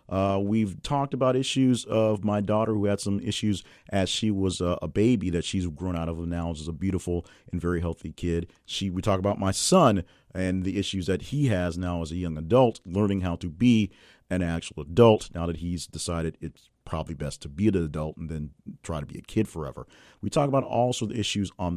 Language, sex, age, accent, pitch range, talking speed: English, male, 40-59, American, 85-110 Hz, 225 wpm